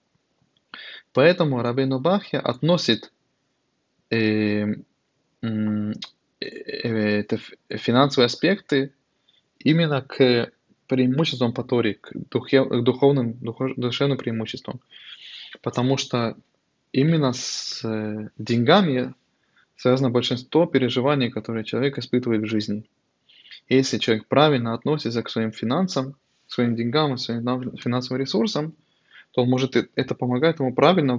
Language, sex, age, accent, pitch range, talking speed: Russian, male, 20-39, native, 115-140 Hz, 90 wpm